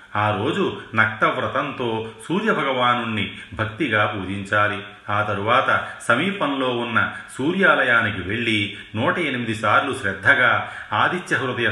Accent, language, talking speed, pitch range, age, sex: native, Telugu, 85 wpm, 100-120 Hz, 40-59, male